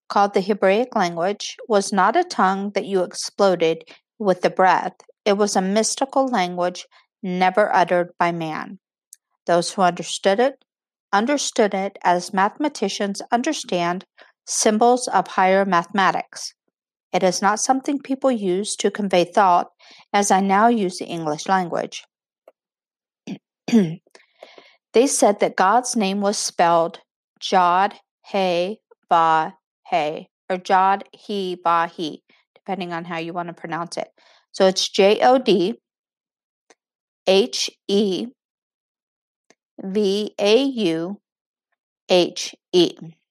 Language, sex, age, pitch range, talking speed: English, female, 50-69, 180-225 Hz, 110 wpm